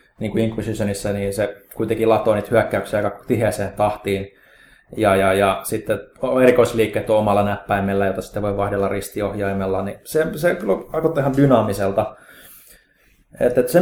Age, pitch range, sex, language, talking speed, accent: 20-39, 110-125 Hz, male, Finnish, 140 wpm, native